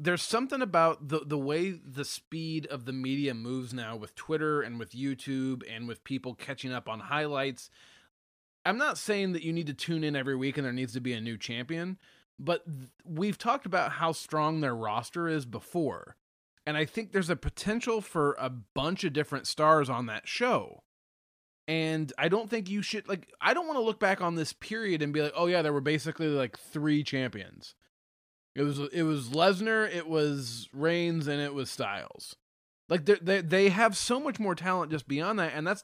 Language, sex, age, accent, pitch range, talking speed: English, male, 20-39, American, 135-180 Hz, 205 wpm